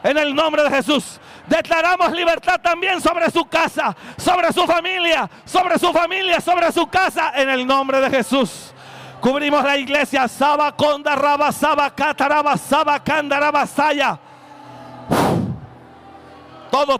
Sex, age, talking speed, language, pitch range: male, 40-59, 125 wpm, Spanish, 285-320 Hz